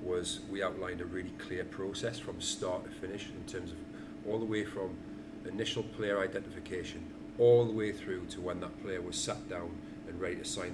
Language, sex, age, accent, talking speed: English, male, 40-59, British, 200 wpm